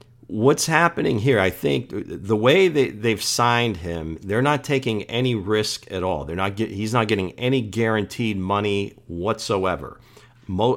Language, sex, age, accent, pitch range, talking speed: English, male, 50-69, American, 95-115 Hz, 160 wpm